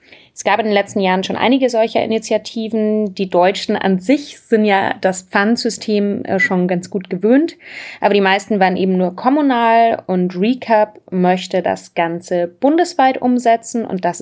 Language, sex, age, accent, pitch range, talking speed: German, female, 20-39, German, 190-230 Hz, 160 wpm